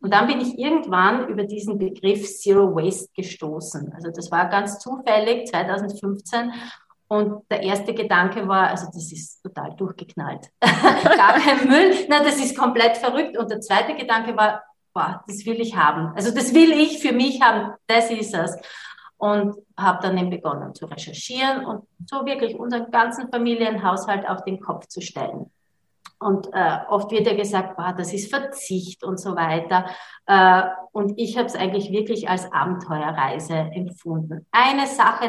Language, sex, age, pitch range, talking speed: German, female, 30-49, 185-235 Hz, 165 wpm